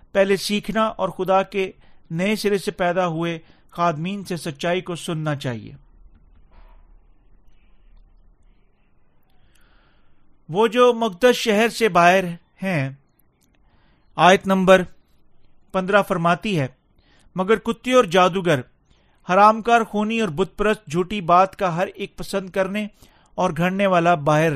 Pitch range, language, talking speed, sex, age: 155-215 Hz, Urdu, 115 wpm, male, 40-59